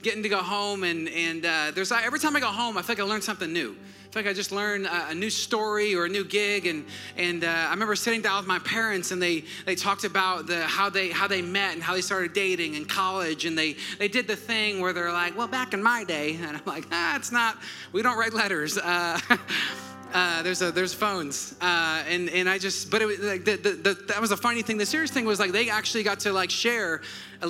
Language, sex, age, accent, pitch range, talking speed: English, male, 30-49, American, 170-205 Hz, 265 wpm